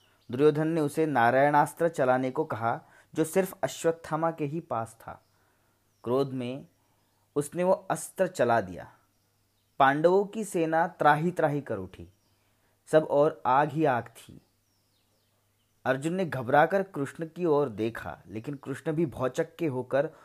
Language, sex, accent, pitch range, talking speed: Hindi, male, native, 115-160 Hz, 140 wpm